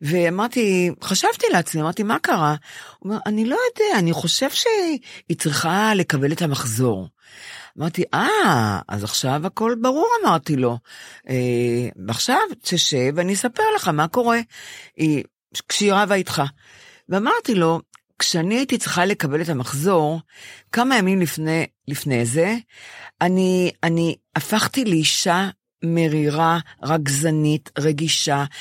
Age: 50-69